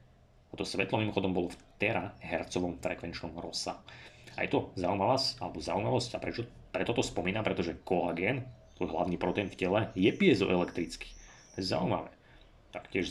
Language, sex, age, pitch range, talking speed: Slovak, male, 30-49, 90-105 Hz, 150 wpm